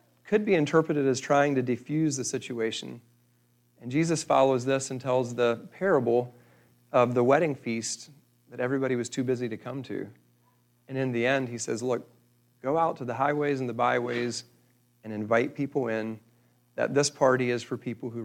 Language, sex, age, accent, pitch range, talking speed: English, male, 40-59, American, 120-140 Hz, 180 wpm